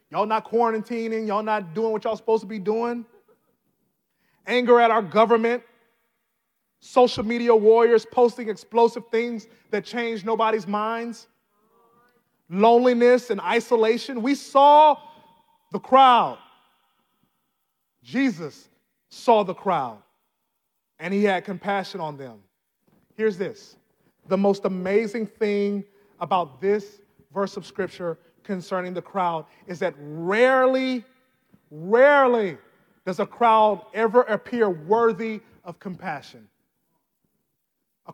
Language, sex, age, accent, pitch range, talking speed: English, male, 30-49, American, 195-235 Hz, 110 wpm